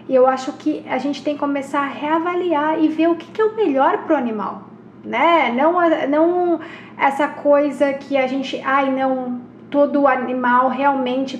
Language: Portuguese